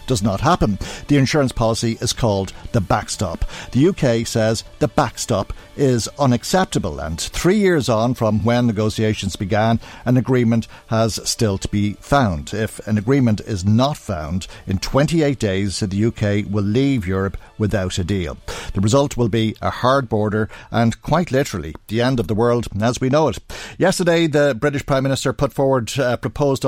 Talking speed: 175 wpm